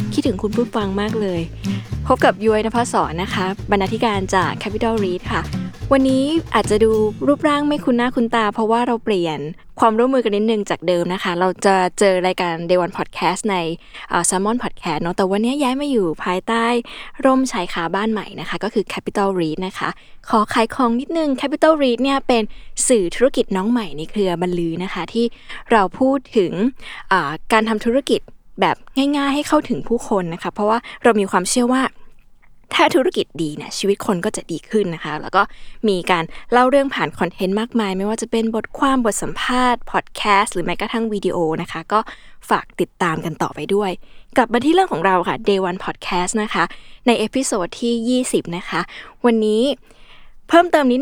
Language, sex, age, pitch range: Thai, female, 20-39, 185-245 Hz